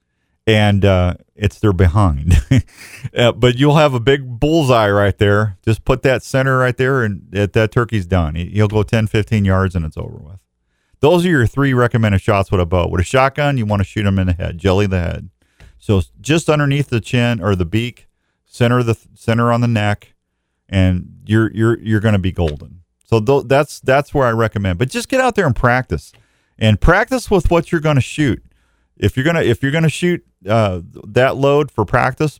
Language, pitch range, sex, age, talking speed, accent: English, 95-135 Hz, male, 40-59, 215 wpm, American